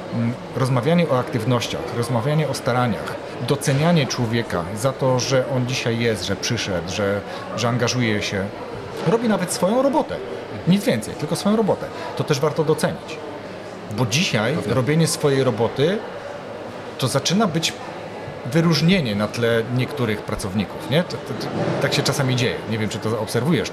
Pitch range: 110-150 Hz